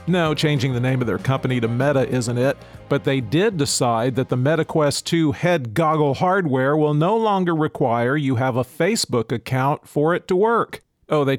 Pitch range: 130-160 Hz